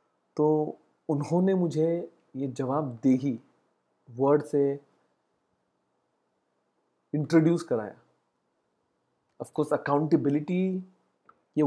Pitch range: 140-165 Hz